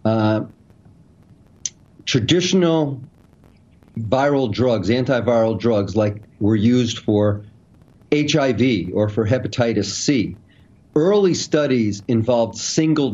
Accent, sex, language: American, male, English